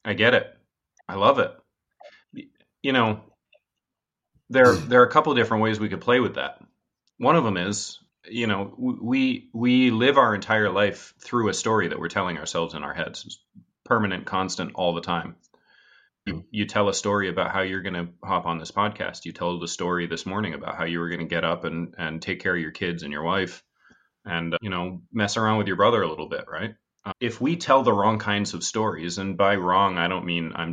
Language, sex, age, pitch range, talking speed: English, male, 30-49, 90-115 Hz, 220 wpm